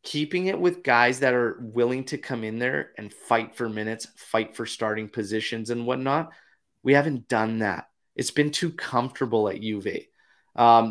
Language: English